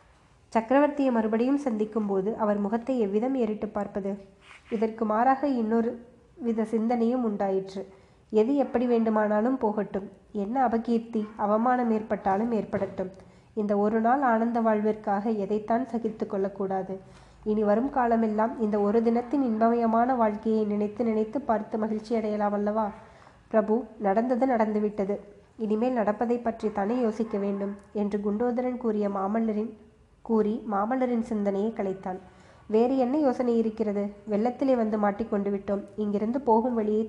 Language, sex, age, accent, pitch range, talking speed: Tamil, female, 20-39, native, 205-235 Hz, 120 wpm